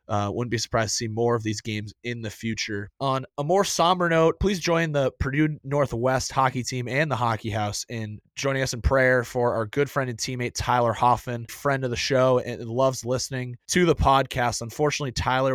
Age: 20-39